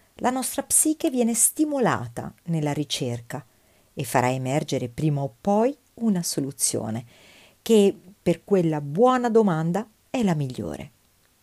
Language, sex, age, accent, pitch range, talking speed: Italian, female, 50-69, native, 140-225 Hz, 120 wpm